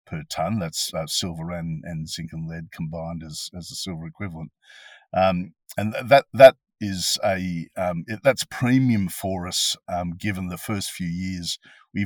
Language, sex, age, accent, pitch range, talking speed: English, male, 50-69, Australian, 85-100 Hz, 175 wpm